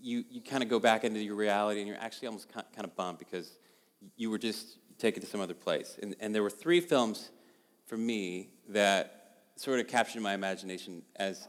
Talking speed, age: 210 wpm, 30-49